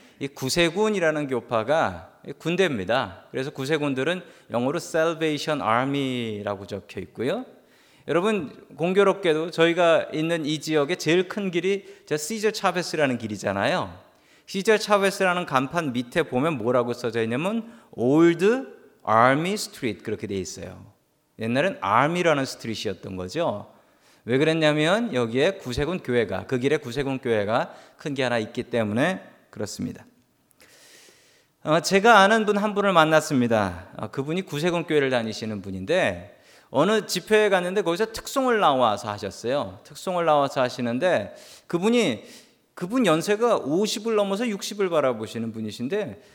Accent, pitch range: native, 125-205 Hz